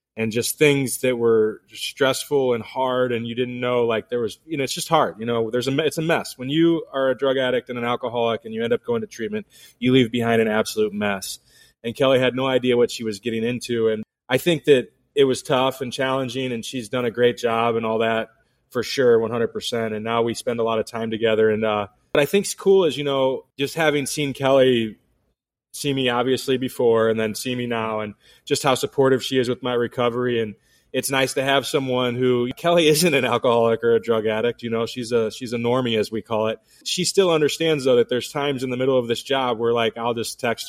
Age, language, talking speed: 20-39, English, 245 wpm